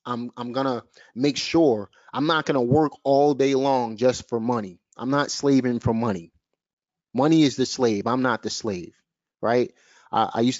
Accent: American